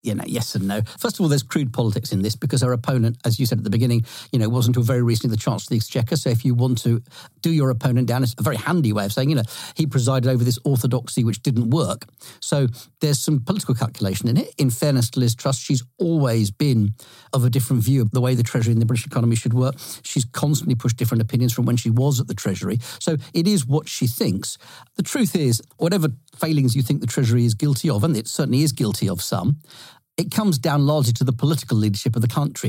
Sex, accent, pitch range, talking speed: male, British, 120-145 Hz, 250 wpm